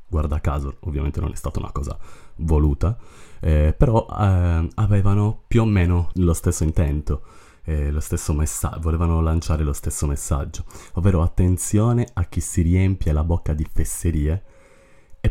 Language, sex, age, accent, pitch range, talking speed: Italian, male, 30-49, native, 75-90 Hz, 155 wpm